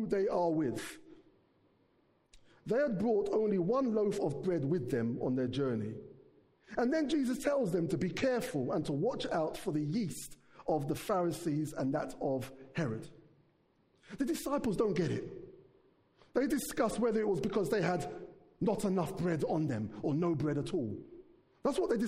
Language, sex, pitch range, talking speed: English, male, 150-220 Hz, 175 wpm